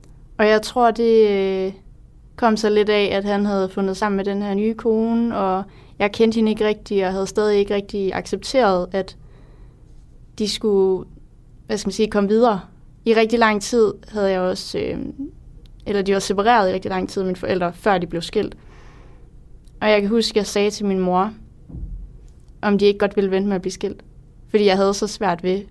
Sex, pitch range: female, 190-215 Hz